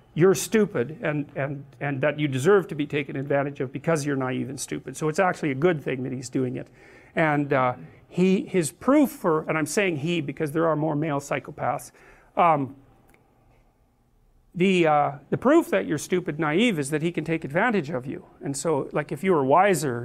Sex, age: male, 50-69